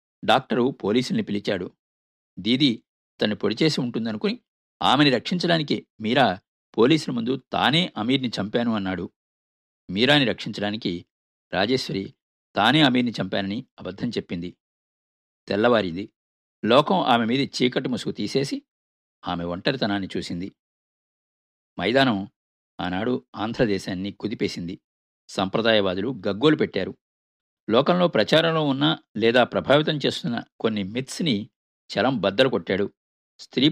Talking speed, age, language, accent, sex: 95 wpm, 50-69, Telugu, native, male